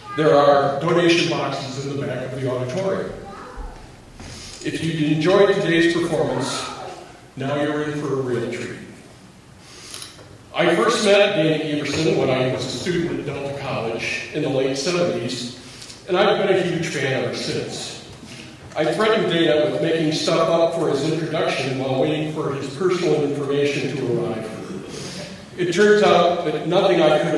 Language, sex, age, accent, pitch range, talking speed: English, male, 50-69, American, 140-180 Hz, 160 wpm